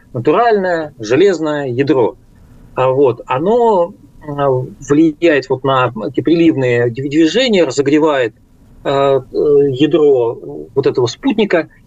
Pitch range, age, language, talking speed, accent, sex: 130-195 Hz, 40-59, Russian, 75 wpm, native, male